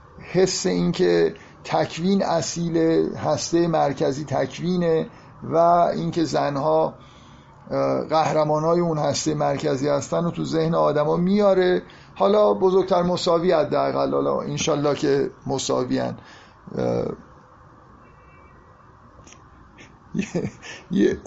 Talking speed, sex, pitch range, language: 85 wpm, male, 125-170 Hz, Persian